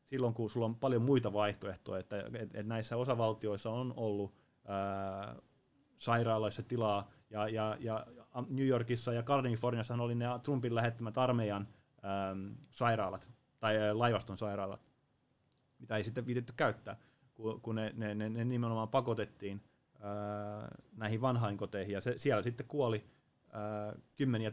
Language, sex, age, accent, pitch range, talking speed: Finnish, male, 30-49, native, 105-125 Hz, 135 wpm